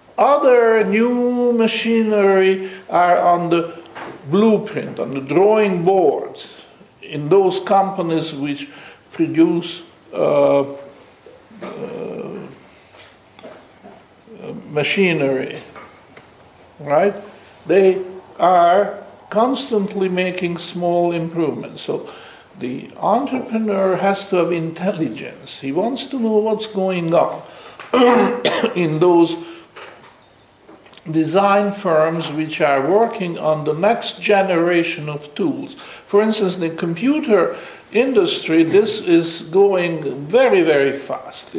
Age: 60-79